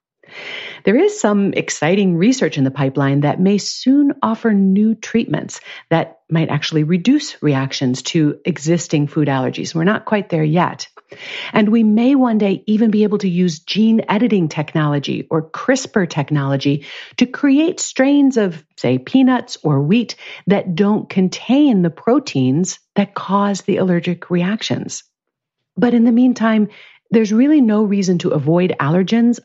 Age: 50-69